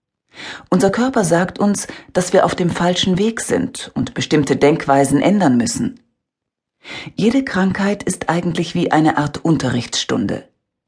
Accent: German